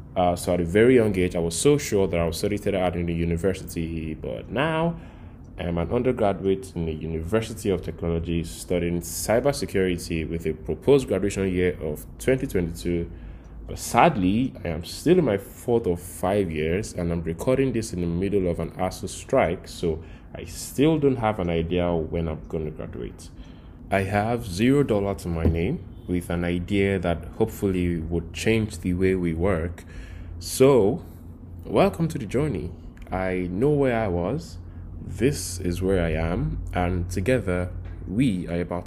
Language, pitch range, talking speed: English, 85-110 Hz, 170 wpm